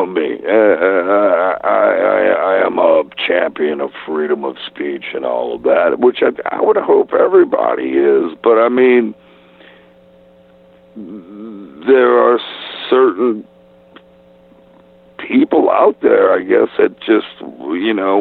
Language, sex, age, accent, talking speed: English, male, 60-79, American, 125 wpm